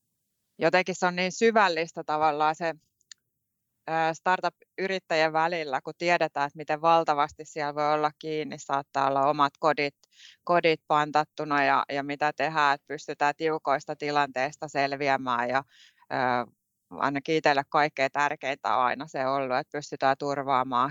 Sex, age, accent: female, 20-39, native